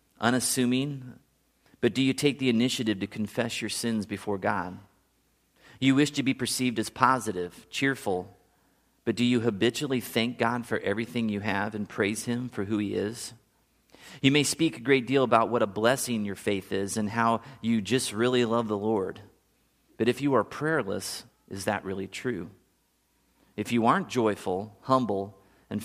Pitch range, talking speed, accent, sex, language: 105-125 Hz, 170 wpm, American, male, English